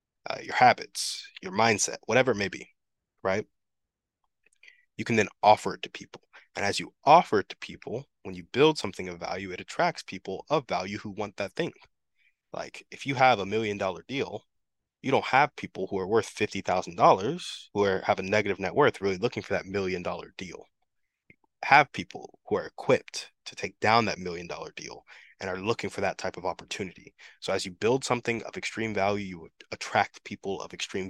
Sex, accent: male, American